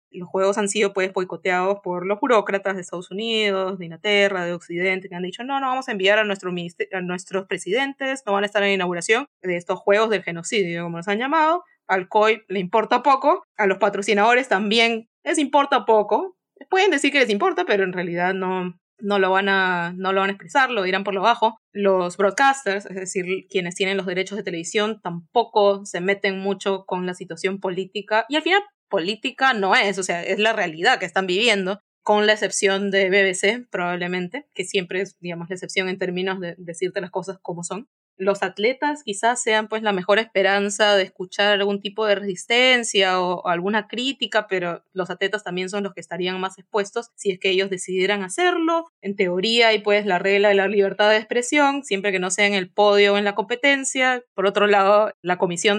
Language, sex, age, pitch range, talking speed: English, female, 20-39, 185-220 Hz, 210 wpm